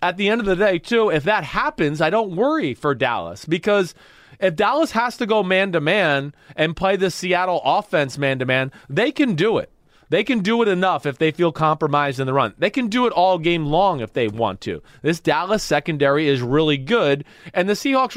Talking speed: 210 wpm